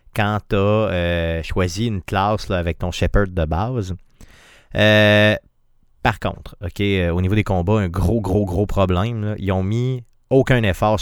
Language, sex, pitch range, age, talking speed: French, male, 95-110 Hz, 30-49, 180 wpm